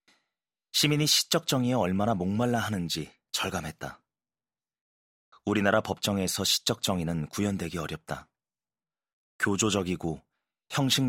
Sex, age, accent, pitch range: male, 30-49, native, 85-115 Hz